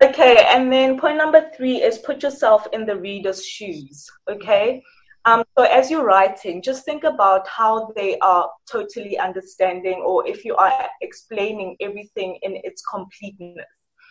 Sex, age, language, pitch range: female, 20-39, English, 185-270 Hz